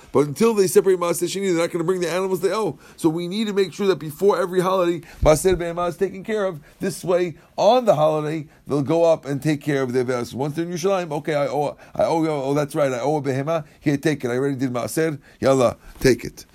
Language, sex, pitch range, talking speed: English, male, 135-175 Hz, 255 wpm